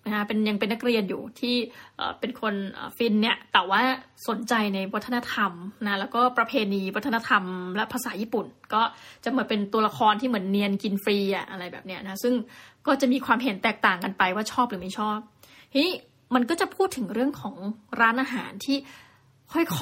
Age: 20-39